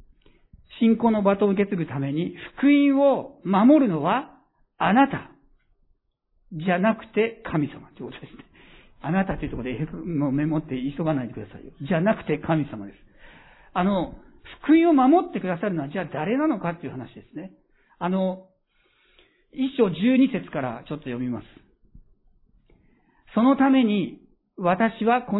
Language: Japanese